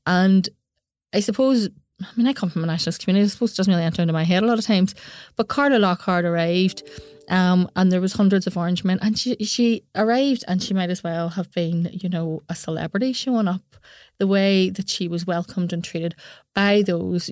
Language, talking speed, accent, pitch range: English, 220 wpm, Irish, 170-205 Hz